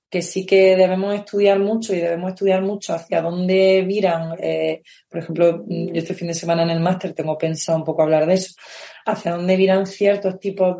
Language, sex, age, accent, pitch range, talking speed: Spanish, female, 30-49, Spanish, 180-220 Hz, 200 wpm